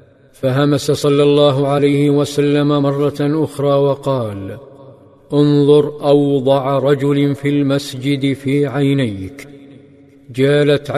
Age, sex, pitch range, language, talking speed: 50-69, male, 135-145 Hz, Arabic, 85 wpm